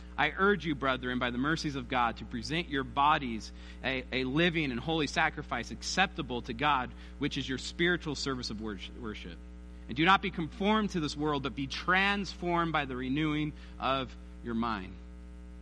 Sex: male